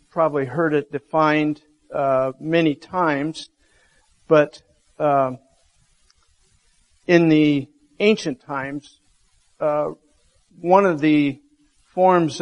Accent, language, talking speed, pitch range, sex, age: American, English, 85 wpm, 135-160 Hz, male, 50-69